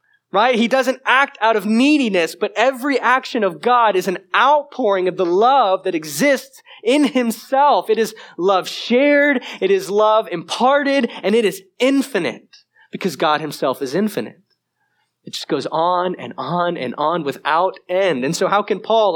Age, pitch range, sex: 20-39, 155-225 Hz, male